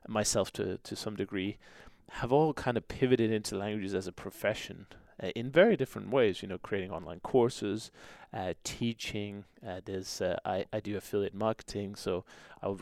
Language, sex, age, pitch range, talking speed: English, male, 20-39, 95-115 Hz, 180 wpm